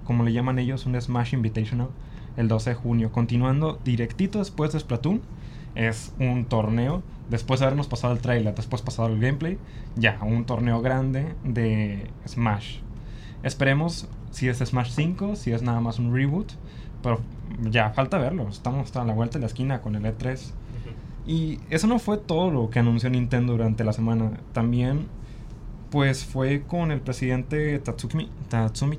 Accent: Mexican